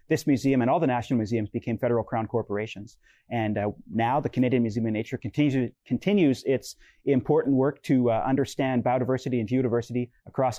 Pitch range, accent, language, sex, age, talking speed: 115-130 Hz, American, English, male, 30-49, 170 wpm